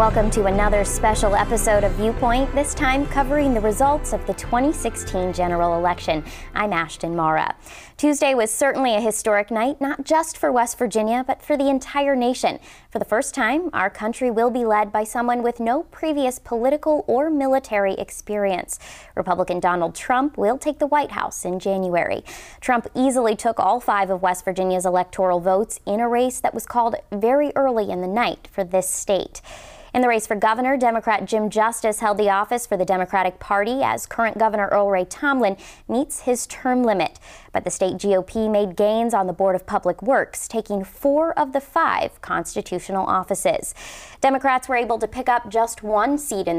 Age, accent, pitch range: 20-39, American, 195-255 Hz